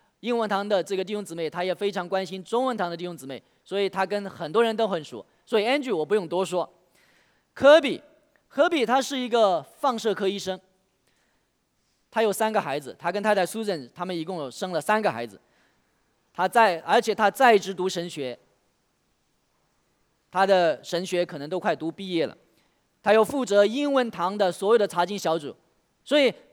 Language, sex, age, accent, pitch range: English, male, 20-39, Chinese, 185-240 Hz